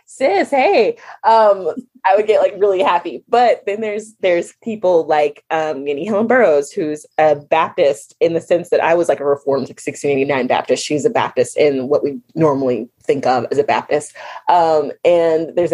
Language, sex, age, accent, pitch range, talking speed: English, female, 20-39, American, 155-230 Hz, 185 wpm